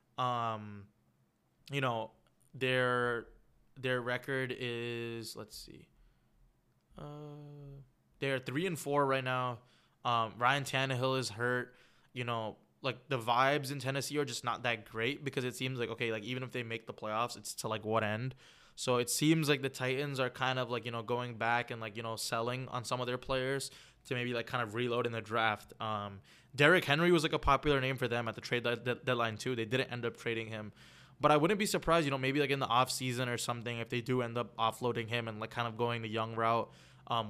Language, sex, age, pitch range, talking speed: English, male, 20-39, 115-135 Hz, 215 wpm